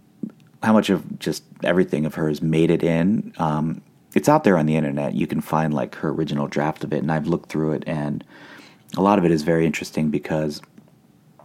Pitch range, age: 80-95 Hz, 30-49